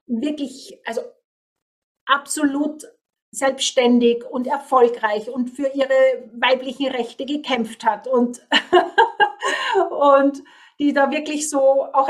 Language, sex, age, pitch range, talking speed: German, female, 40-59, 255-315 Hz, 100 wpm